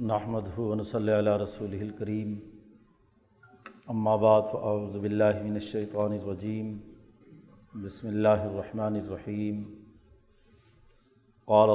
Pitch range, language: 105-115 Hz, Urdu